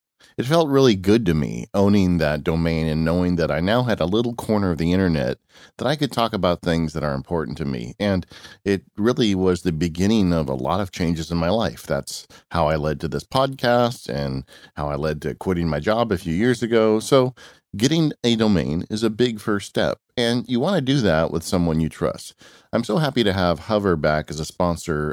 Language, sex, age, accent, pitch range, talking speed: English, male, 40-59, American, 80-115 Hz, 225 wpm